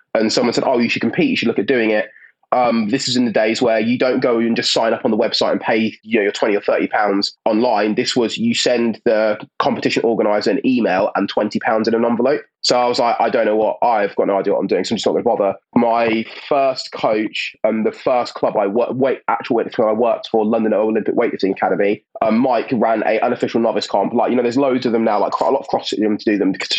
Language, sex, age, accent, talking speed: English, male, 20-39, British, 260 wpm